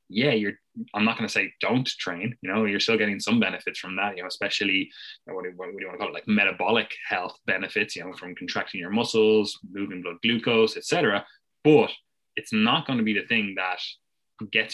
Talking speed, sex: 215 wpm, male